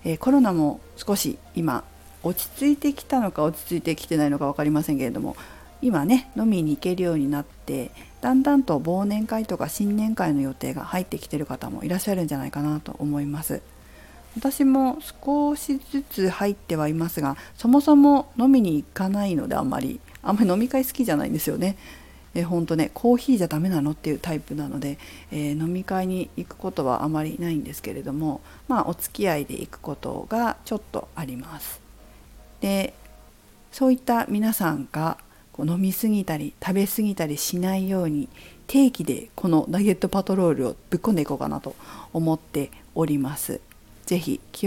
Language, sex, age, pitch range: Japanese, female, 40-59, 145-220 Hz